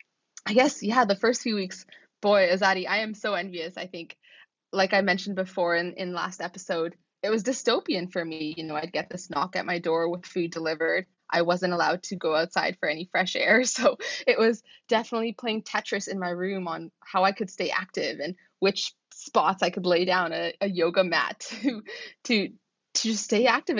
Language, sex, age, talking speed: English, female, 20-39, 200 wpm